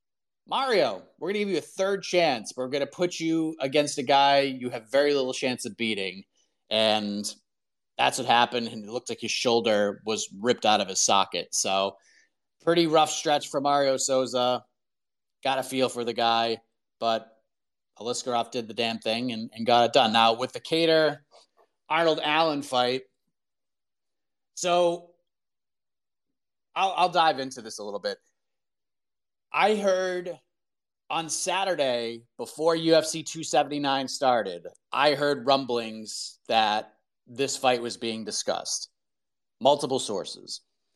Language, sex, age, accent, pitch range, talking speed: English, male, 30-49, American, 120-160 Hz, 145 wpm